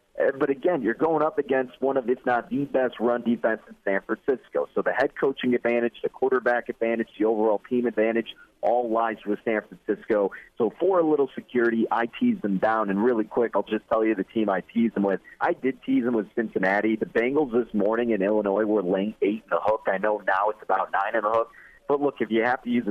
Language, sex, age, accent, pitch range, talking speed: English, male, 40-59, American, 105-130 Hz, 235 wpm